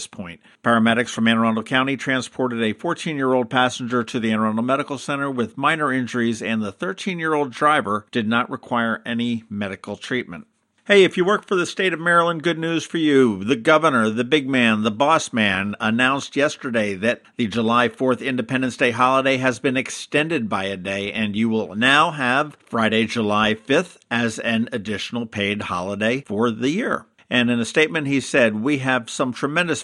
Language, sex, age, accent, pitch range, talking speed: English, male, 50-69, American, 110-145 Hz, 185 wpm